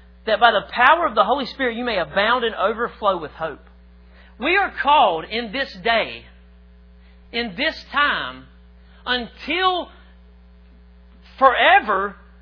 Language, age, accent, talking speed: English, 40-59, American, 125 wpm